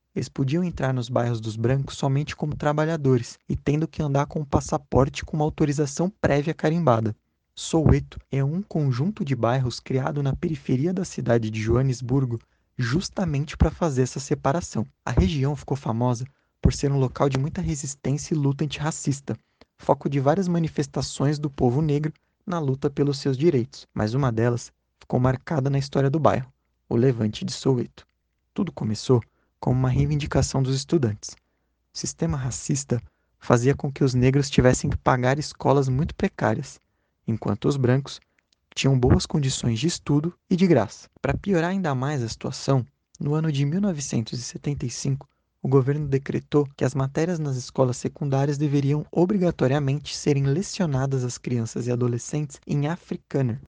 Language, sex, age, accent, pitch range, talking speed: Portuguese, male, 20-39, Brazilian, 125-150 Hz, 155 wpm